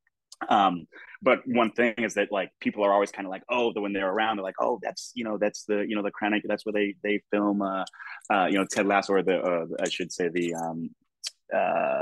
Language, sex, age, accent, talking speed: English, male, 20-39, American, 250 wpm